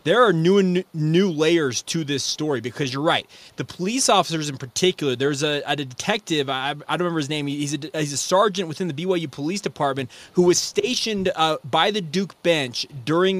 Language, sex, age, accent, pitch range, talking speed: English, male, 20-39, American, 150-190 Hz, 205 wpm